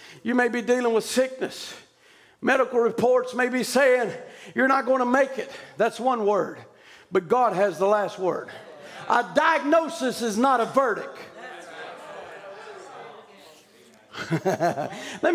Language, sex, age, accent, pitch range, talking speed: English, male, 50-69, American, 235-345 Hz, 130 wpm